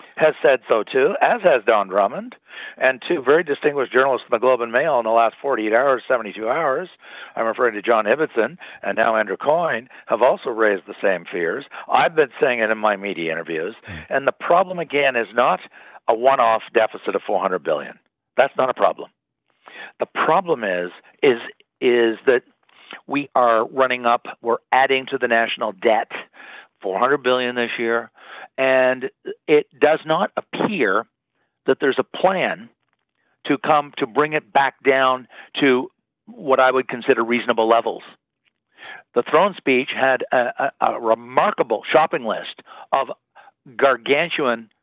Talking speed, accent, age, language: 160 wpm, American, 60-79, English